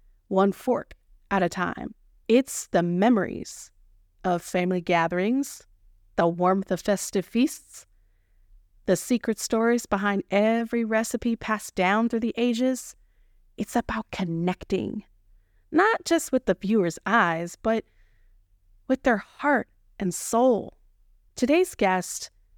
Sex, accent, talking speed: female, American, 115 wpm